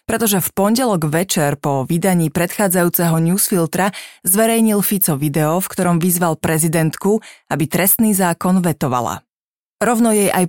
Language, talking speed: Slovak, 125 wpm